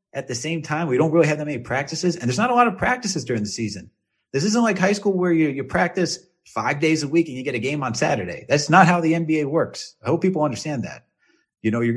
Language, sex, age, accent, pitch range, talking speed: English, male, 30-49, American, 105-145 Hz, 275 wpm